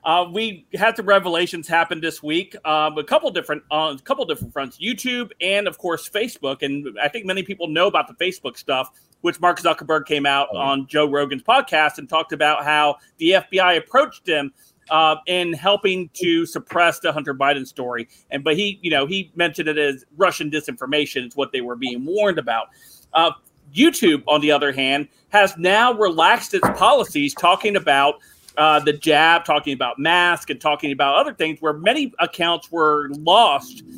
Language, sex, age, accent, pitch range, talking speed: English, male, 40-59, American, 150-185 Hz, 180 wpm